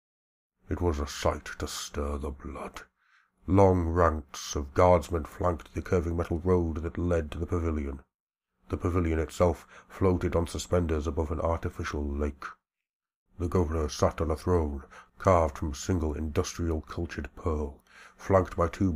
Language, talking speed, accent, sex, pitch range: English, 150 wpm, British, male, 80-90 Hz